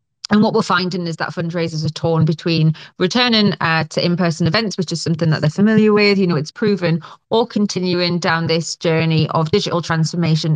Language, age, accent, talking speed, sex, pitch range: English, 30-49, British, 195 wpm, female, 155-185 Hz